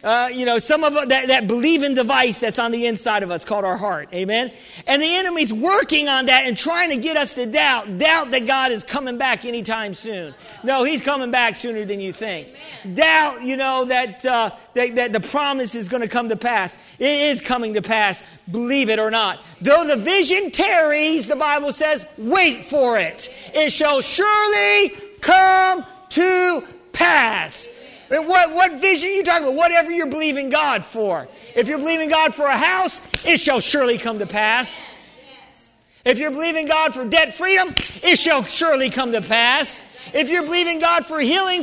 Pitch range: 250-350 Hz